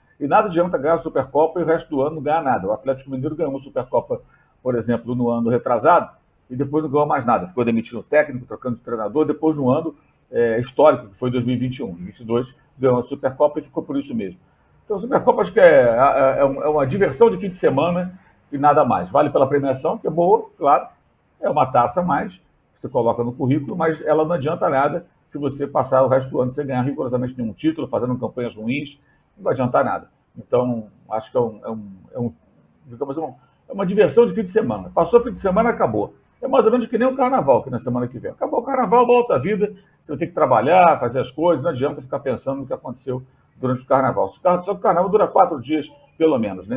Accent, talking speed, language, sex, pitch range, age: Brazilian, 230 wpm, Portuguese, male, 125-175 Hz, 50-69